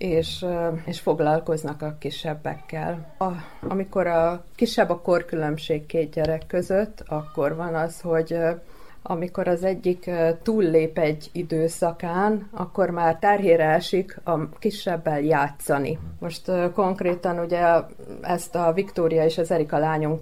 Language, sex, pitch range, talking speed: Hungarian, female, 155-180 Hz, 120 wpm